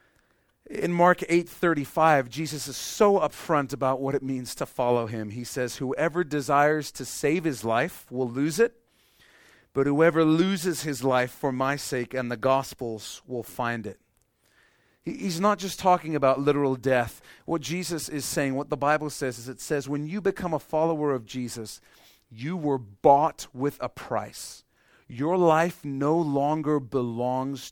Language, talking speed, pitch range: English, 160 wpm, 120-150 Hz